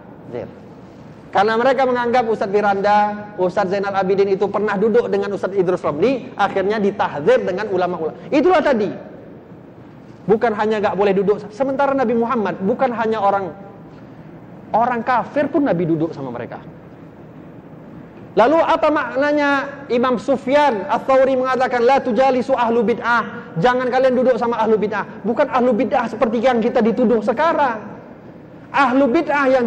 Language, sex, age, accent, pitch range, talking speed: Indonesian, male, 30-49, native, 200-260 Hz, 125 wpm